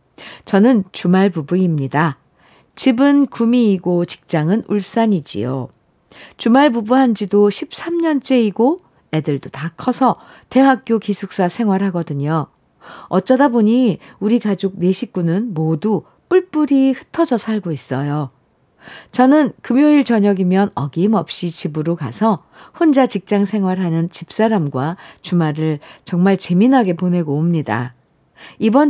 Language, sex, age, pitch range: Korean, female, 50-69, 165-235 Hz